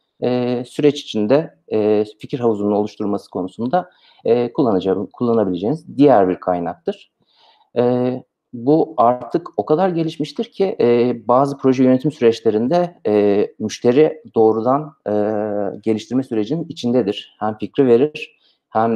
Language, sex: Turkish, male